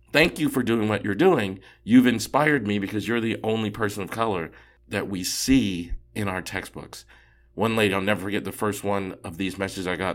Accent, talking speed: American, 215 wpm